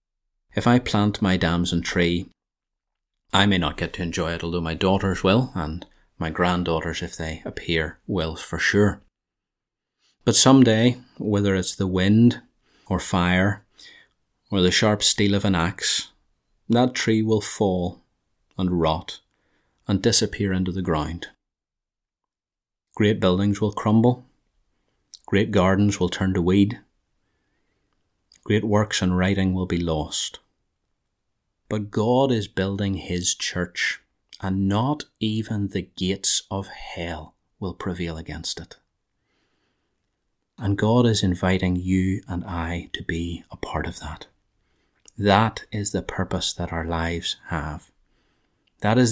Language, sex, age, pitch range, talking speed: English, male, 30-49, 90-105 Hz, 135 wpm